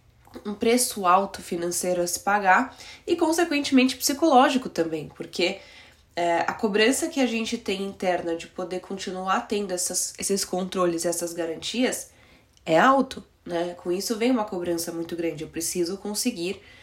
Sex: female